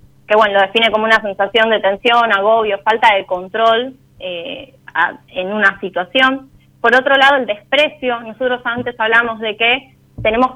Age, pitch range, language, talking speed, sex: 20-39, 200-255 Hz, Spanish, 160 wpm, female